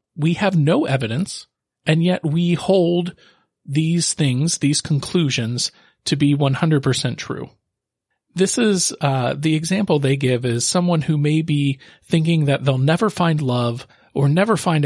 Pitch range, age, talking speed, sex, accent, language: 125-165 Hz, 40-59, 150 wpm, male, American, English